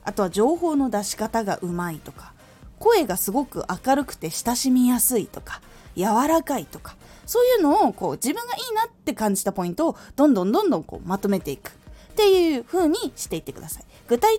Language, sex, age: Japanese, female, 20-39